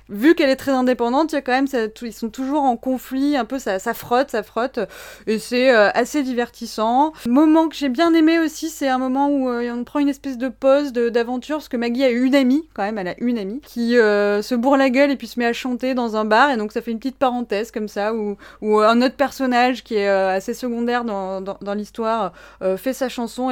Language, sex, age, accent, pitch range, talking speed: French, female, 20-39, French, 205-260 Hz, 260 wpm